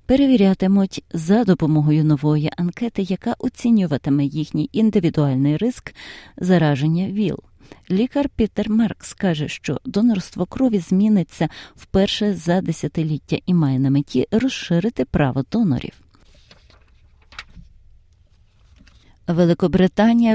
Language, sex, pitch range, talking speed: Ukrainian, female, 150-200 Hz, 90 wpm